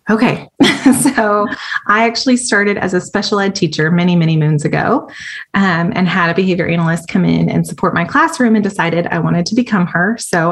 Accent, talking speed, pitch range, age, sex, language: American, 195 wpm, 165-215 Hz, 20-39, female, English